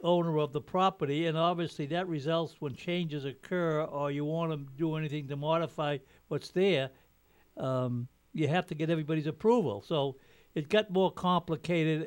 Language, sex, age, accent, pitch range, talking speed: English, male, 60-79, American, 135-155 Hz, 165 wpm